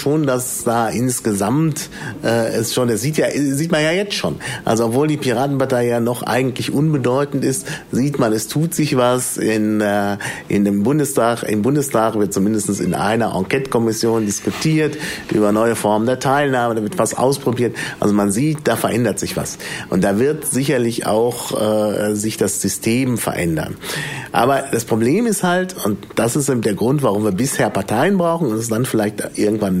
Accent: German